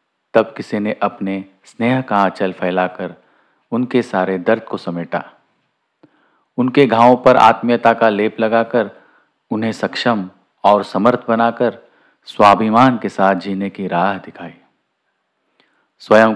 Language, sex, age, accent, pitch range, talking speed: Hindi, male, 40-59, native, 95-115 Hz, 120 wpm